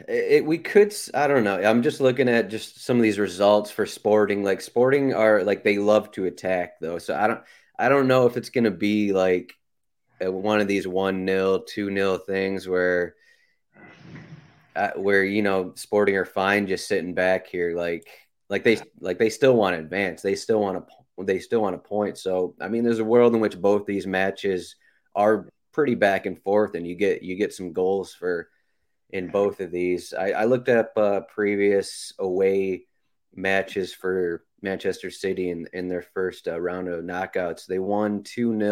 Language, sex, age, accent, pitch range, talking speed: English, male, 30-49, American, 95-110 Hz, 190 wpm